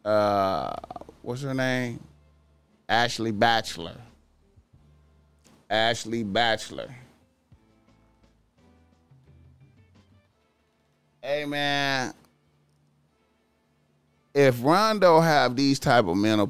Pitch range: 85-125 Hz